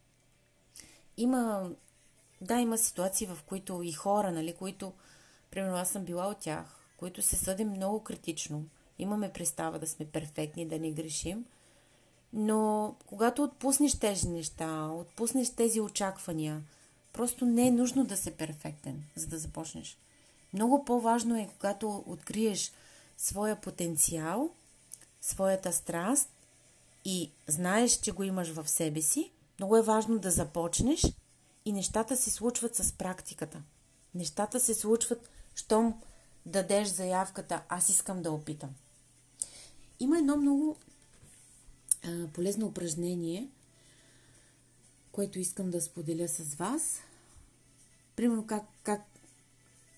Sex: female